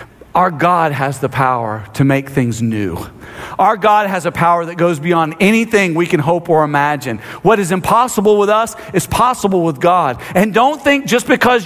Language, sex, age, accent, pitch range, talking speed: English, male, 50-69, American, 135-210 Hz, 190 wpm